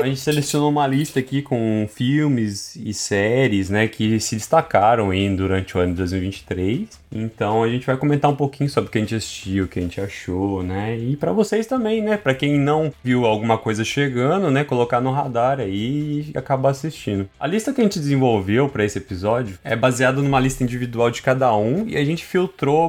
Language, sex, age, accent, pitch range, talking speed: Portuguese, male, 20-39, Brazilian, 105-140 Hz, 210 wpm